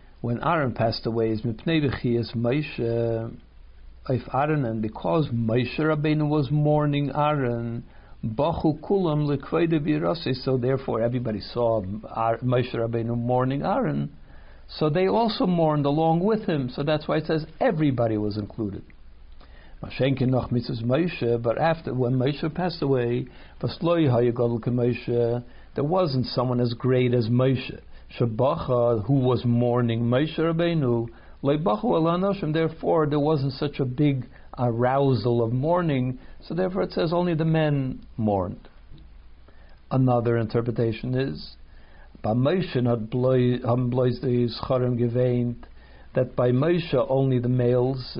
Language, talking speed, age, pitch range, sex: English, 100 wpm, 60-79, 115-145 Hz, male